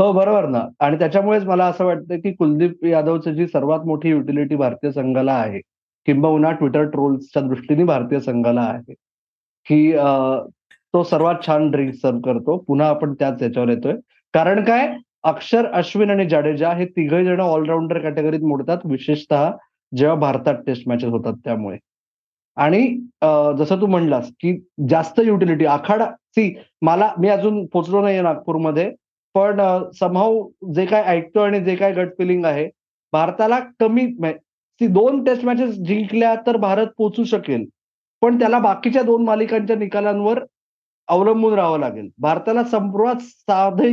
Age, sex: 30-49, male